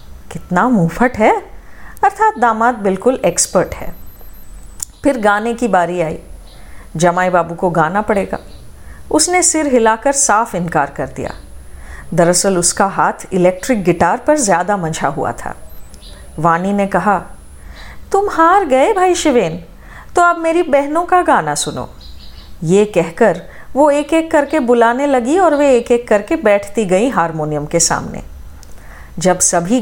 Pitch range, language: 170-270 Hz, Hindi